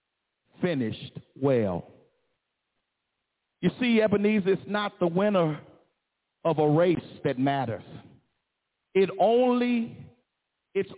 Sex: male